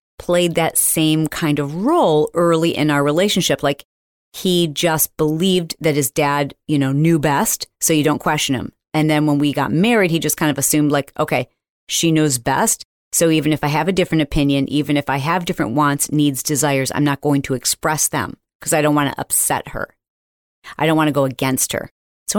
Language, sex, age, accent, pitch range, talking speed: English, female, 40-59, American, 140-170 Hz, 210 wpm